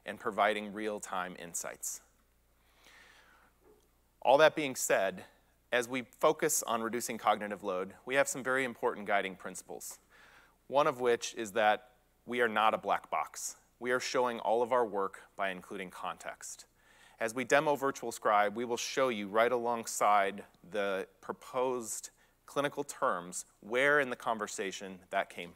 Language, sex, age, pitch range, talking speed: English, male, 30-49, 100-125 Hz, 150 wpm